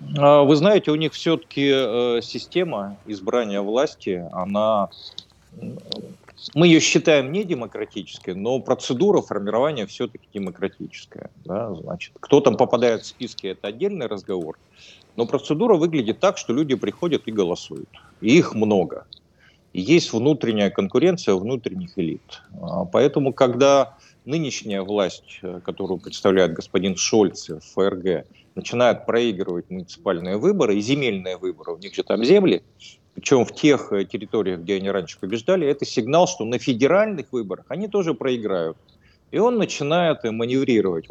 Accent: native